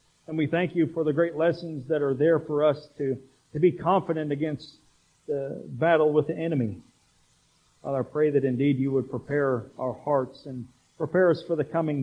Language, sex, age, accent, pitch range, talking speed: English, male, 50-69, American, 130-160 Hz, 195 wpm